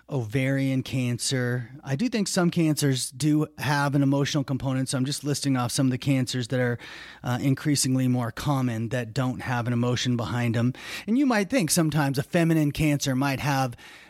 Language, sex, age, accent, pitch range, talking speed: English, male, 30-49, American, 125-150 Hz, 185 wpm